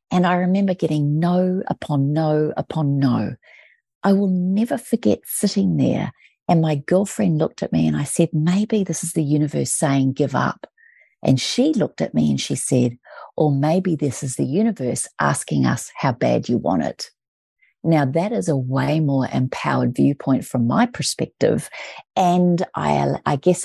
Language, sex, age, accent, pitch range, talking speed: English, female, 40-59, Australian, 135-175 Hz, 175 wpm